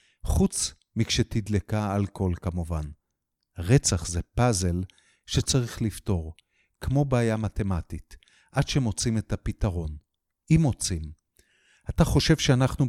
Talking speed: 100 wpm